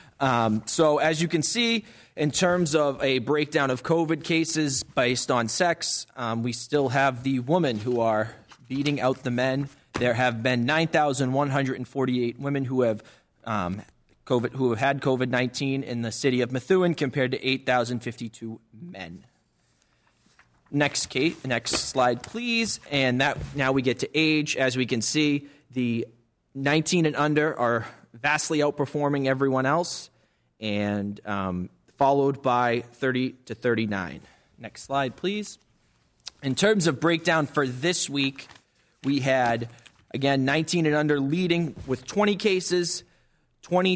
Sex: male